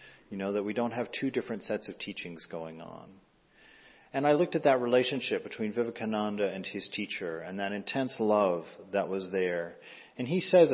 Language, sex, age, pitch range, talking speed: English, male, 40-59, 85-105 Hz, 190 wpm